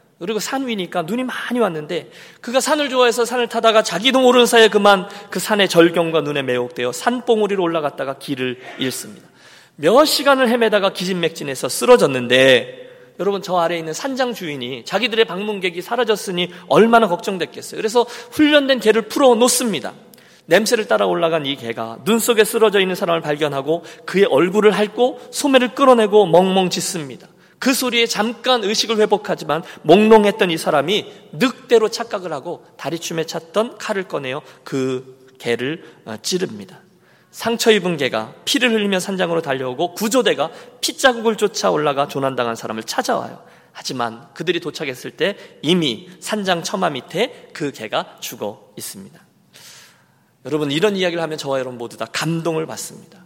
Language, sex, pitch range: Korean, male, 165-240 Hz